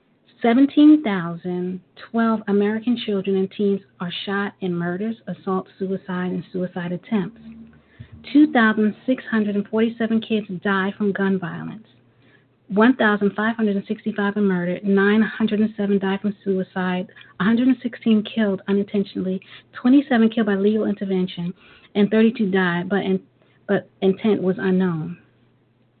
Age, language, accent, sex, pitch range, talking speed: 40-59, English, American, female, 185-220 Hz, 100 wpm